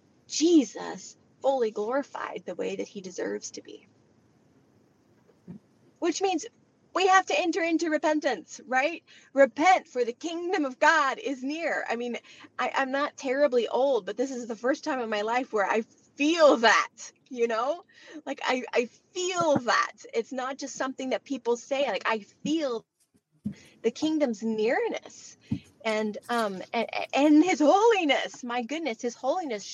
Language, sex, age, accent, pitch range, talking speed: English, female, 30-49, American, 235-320 Hz, 155 wpm